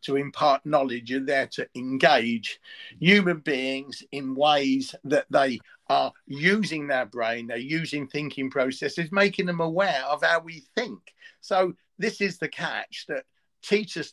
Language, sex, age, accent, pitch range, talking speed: English, male, 50-69, British, 135-170 Hz, 150 wpm